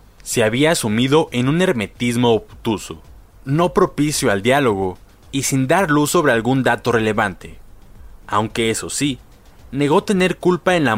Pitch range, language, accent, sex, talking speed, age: 105-140 Hz, Spanish, Mexican, male, 150 wpm, 20-39